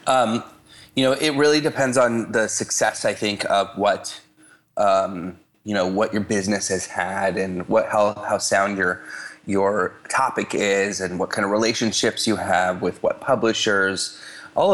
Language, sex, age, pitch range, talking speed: English, male, 20-39, 95-115 Hz, 165 wpm